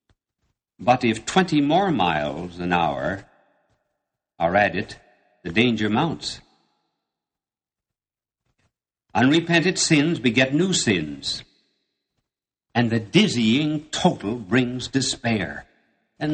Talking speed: 90 wpm